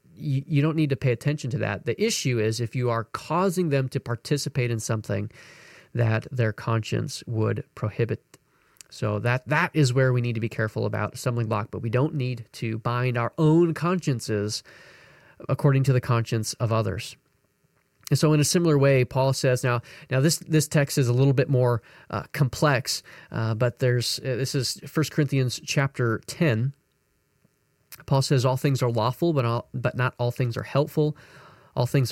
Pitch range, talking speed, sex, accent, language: 120-145 Hz, 185 wpm, male, American, English